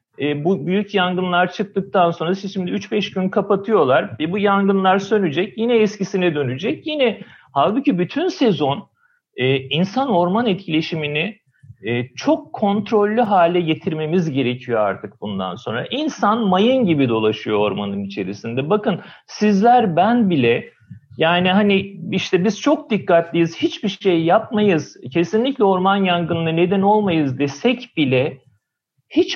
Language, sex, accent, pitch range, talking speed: Turkish, male, native, 145-210 Hz, 125 wpm